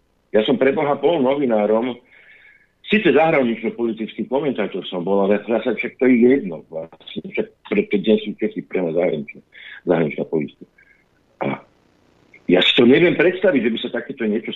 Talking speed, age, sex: 150 wpm, 50-69, male